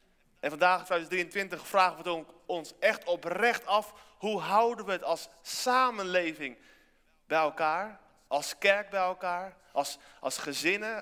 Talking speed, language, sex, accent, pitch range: 130 wpm, Dutch, male, Dutch, 140-185 Hz